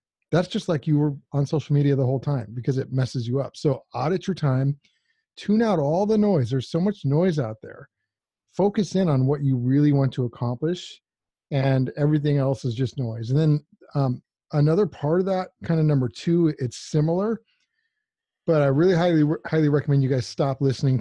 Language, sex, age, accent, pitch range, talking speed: English, male, 40-59, American, 130-160 Hz, 195 wpm